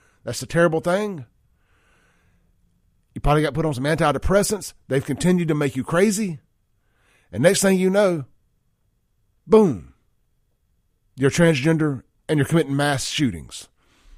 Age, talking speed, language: 40-59, 125 wpm, English